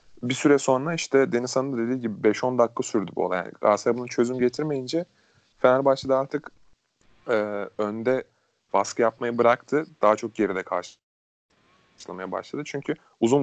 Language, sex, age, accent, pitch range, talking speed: Turkish, male, 30-49, native, 105-125 Hz, 140 wpm